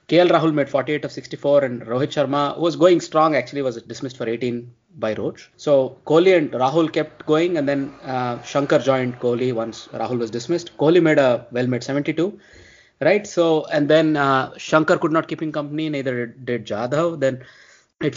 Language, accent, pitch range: English, Indian, 130-155 Hz